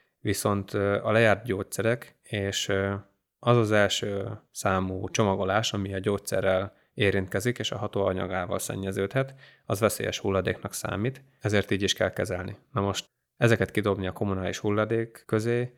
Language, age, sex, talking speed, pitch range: Hungarian, 20-39, male, 135 wpm, 95-110 Hz